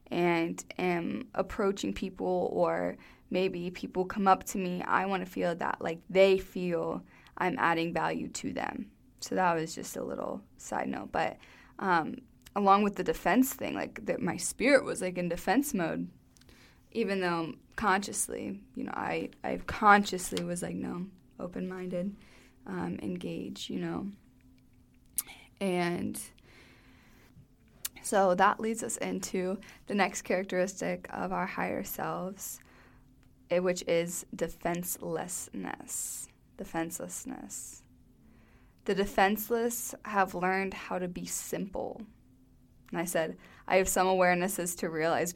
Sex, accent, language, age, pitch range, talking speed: female, American, English, 20-39, 170-200 Hz, 130 wpm